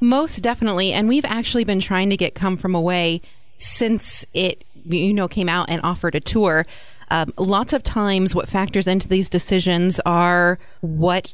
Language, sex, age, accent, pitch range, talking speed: English, female, 30-49, American, 175-205 Hz, 175 wpm